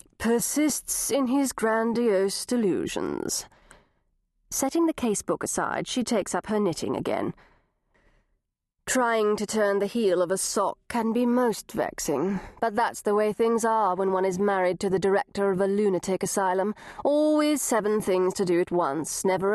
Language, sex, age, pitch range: English, female, 40-59, 195-275 Hz